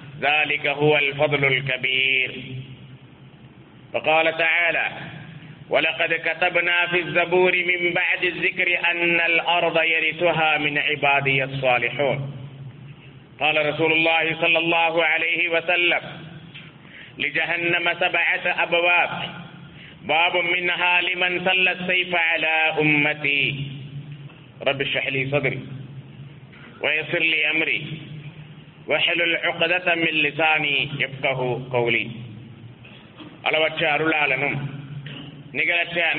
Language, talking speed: Tamil, 75 wpm